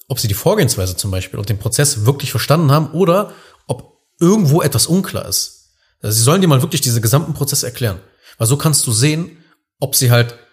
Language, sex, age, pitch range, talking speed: German, male, 40-59, 115-150 Hz, 205 wpm